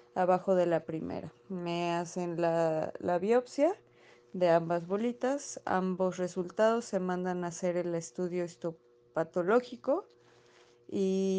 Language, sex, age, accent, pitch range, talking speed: Spanish, female, 20-39, Mexican, 170-190 Hz, 115 wpm